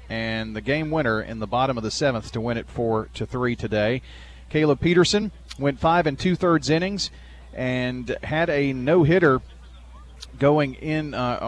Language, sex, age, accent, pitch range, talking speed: English, male, 40-59, American, 110-145 Hz, 160 wpm